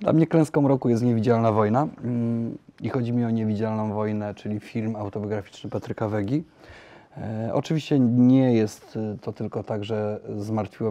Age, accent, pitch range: 30-49, native, 105-115 Hz